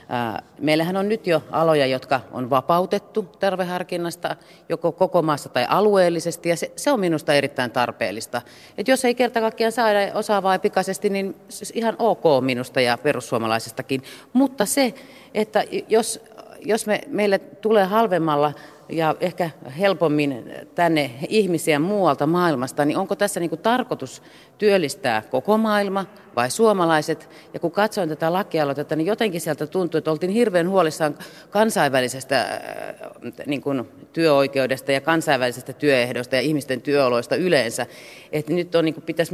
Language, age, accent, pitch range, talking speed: Finnish, 40-59, native, 135-185 Hz, 135 wpm